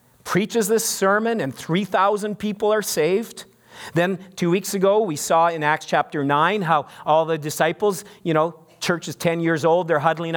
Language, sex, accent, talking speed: English, male, American, 180 wpm